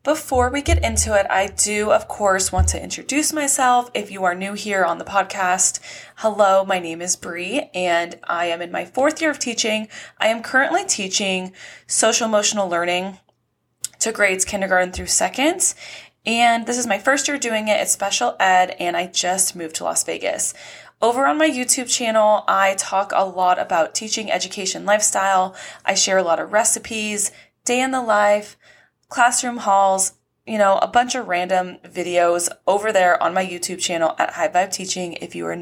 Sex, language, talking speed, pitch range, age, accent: female, English, 185 wpm, 180-230 Hz, 20-39, American